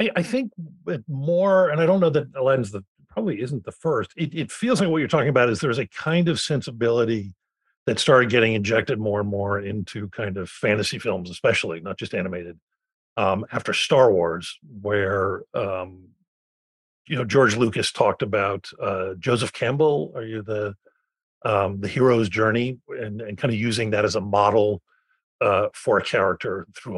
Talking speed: 180 wpm